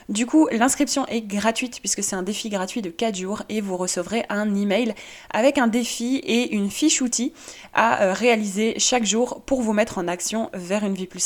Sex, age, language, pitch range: female, 20-39, French, 200-245 Hz